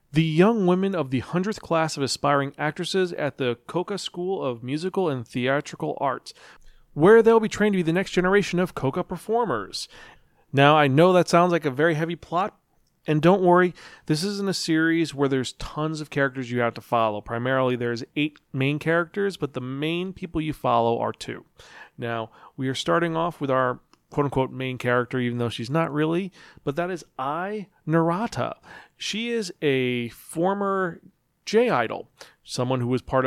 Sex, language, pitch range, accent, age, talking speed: male, English, 125-175 Hz, American, 40-59, 180 wpm